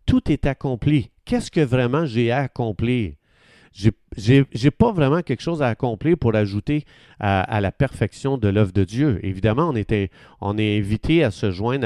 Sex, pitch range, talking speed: male, 105-140 Hz, 170 wpm